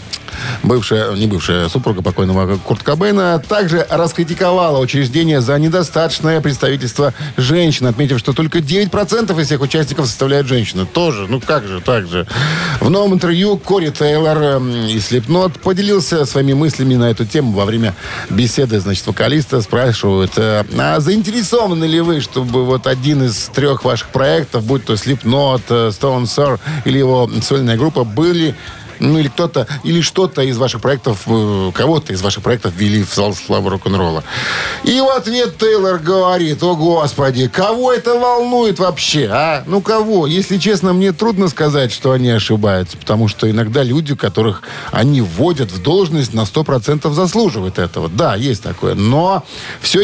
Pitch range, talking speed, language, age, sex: 115-170 Hz, 150 wpm, Russian, 50-69, male